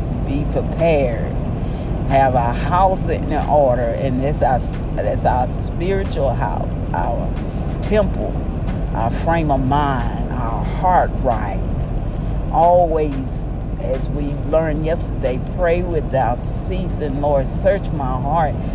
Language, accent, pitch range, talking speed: English, American, 130-155 Hz, 105 wpm